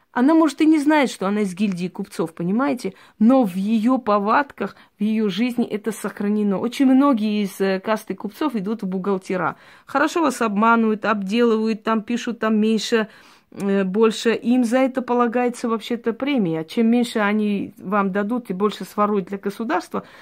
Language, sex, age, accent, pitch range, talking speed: Russian, female, 30-49, native, 190-240 Hz, 165 wpm